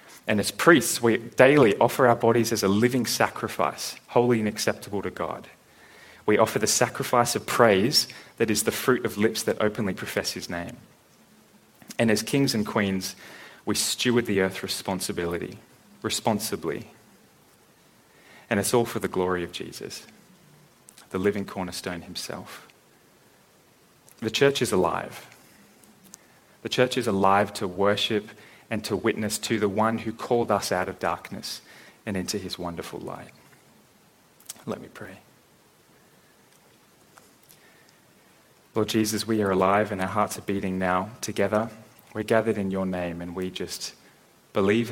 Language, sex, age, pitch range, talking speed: English, male, 30-49, 95-115 Hz, 145 wpm